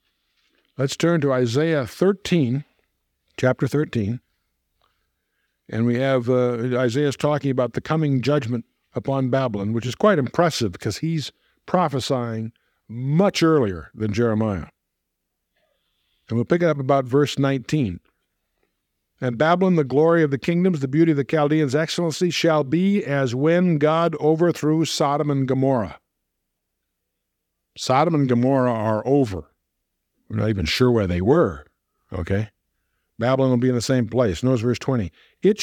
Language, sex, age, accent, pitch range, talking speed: English, male, 50-69, American, 125-170 Hz, 140 wpm